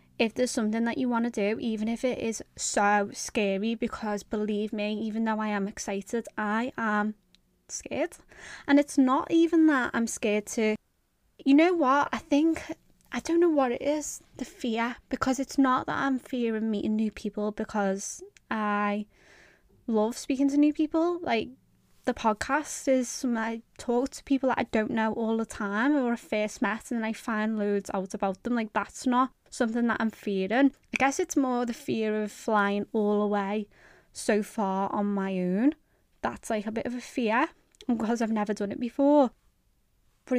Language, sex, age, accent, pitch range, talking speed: English, female, 20-39, British, 210-250 Hz, 190 wpm